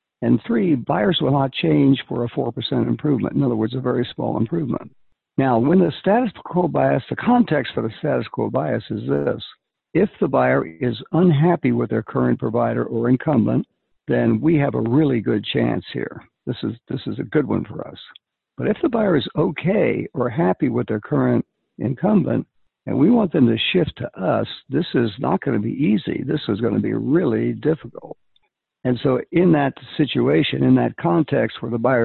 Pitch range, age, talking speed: 115-140 Hz, 60-79, 195 wpm